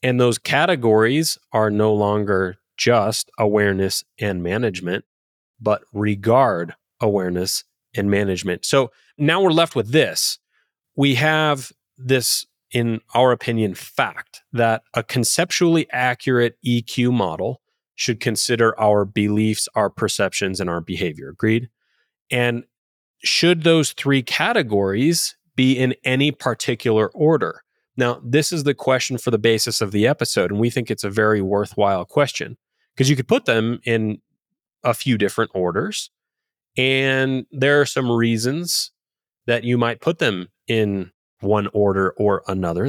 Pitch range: 100-130 Hz